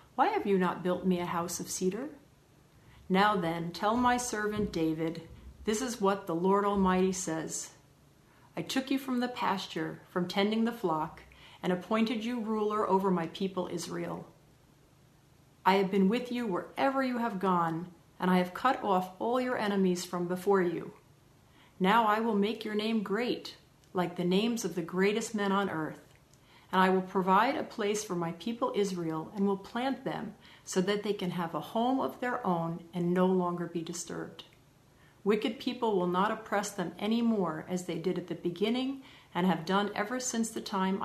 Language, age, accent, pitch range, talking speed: English, 40-59, American, 170-210 Hz, 185 wpm